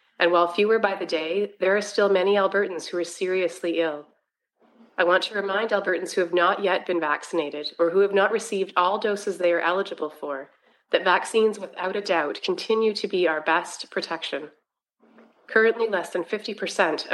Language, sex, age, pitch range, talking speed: English, female, 30-49, 170-205 Hz, 180 wpm